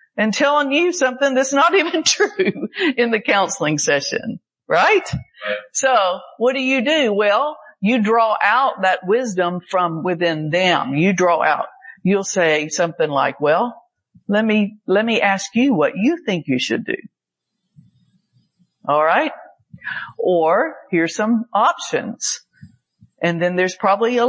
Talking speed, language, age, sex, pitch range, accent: 145 wpm, English, 50-69, female, 175-255 Hz, American